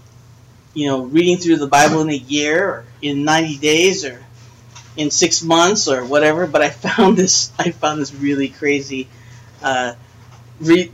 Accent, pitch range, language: American, 145-225 Hz, English